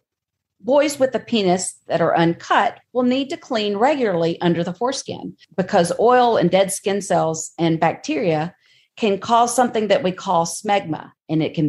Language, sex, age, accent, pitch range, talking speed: English, female, 40-59, American, 165-220 Hz, 170 wpm